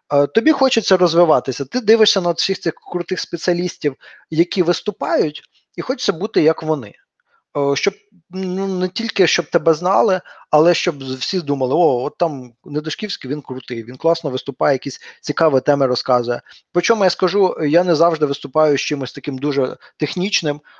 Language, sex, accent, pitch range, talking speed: Ukrainian, male, native, 145-180 Hz, 155 wpm